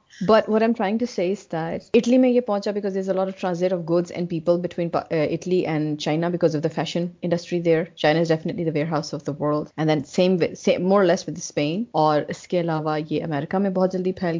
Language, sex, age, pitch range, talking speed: Urdu, female, 30-49, 155-185 Hz, 245 wpm